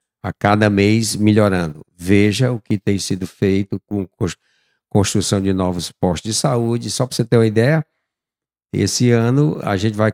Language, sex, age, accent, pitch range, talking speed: Portuguese, male, 60-79, Brazilian, 100-125 Hz, 165 wpm